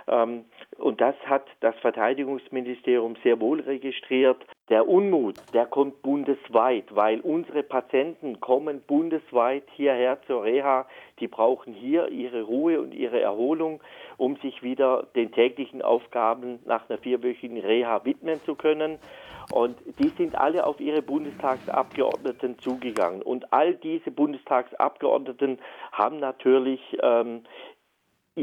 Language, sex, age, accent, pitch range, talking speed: German, male, 50-69, German, 120-155 Hz, 120 wpm